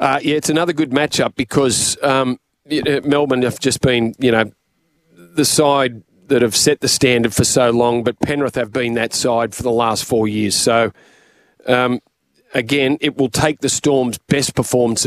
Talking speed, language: 185 wpm, English